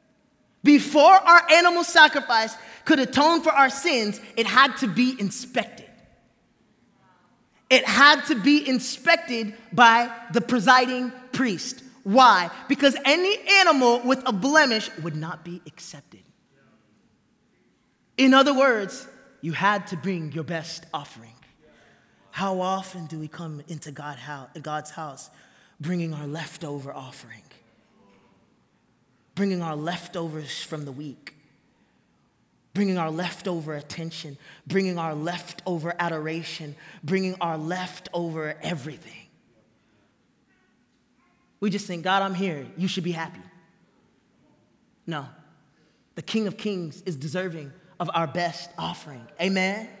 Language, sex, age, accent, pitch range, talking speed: English, male, 20-39, American, 160-240 Hz, 115 wpm